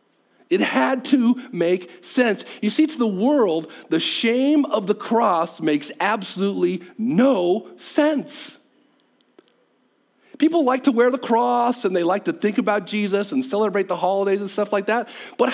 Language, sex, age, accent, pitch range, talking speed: English, male, 50-69, American, 210-295 Hz, 160 wpm